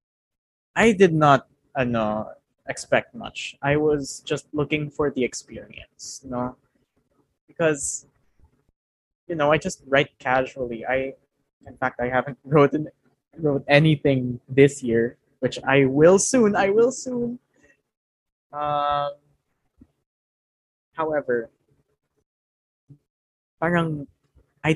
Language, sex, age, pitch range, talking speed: Filipino, male, 20-39, 120-145 Hz, 105 wpm